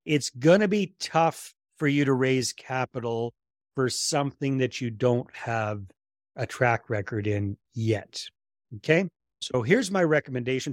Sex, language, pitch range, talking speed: male, English, 110-150 Hz, 145 wpm